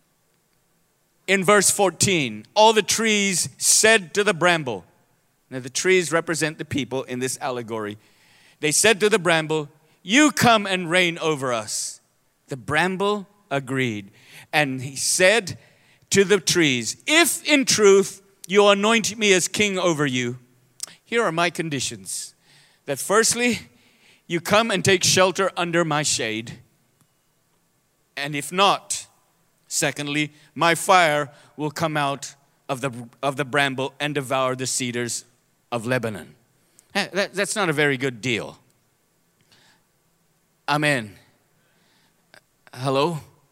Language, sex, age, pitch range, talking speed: English, male, 40-59, 140-195 Hz, 130 wpm